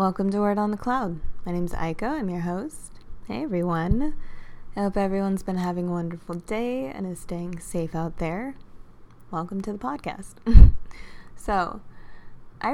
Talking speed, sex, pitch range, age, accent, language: 165 wpm, female, 160-200 Hz, 20-39, American, English